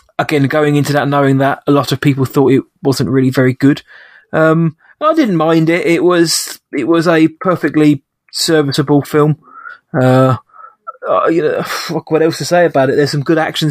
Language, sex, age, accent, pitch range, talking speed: English, male, 20-39, British, 140-160 Hz, 190 wpm